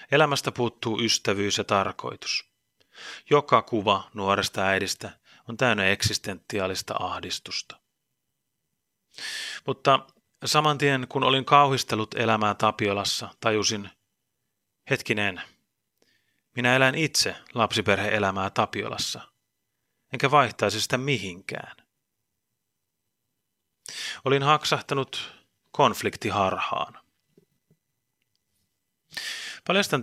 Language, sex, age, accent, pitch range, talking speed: Finnish, male, 30-49, native, 105-130 Hz, 75 wpm